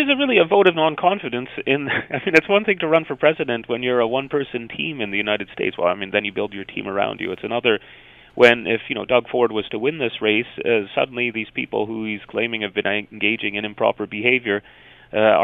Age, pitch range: 30-49, 105-135 Hz